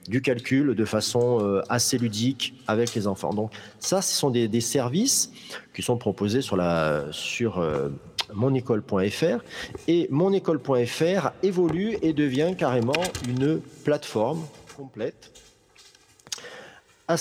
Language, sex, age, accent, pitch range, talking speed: French, male, 40-59, French, 110-160 Hz, 115 wpm